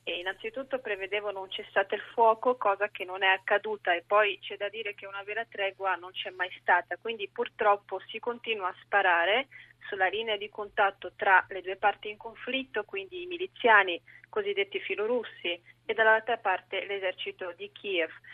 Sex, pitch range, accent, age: female, 190-245 Hz, native, 30-49